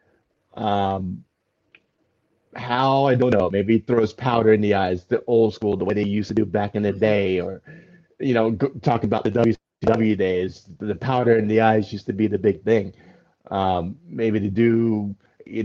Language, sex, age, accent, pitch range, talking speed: English, male, 30-49, American, 105-125 Hz, 190 wpm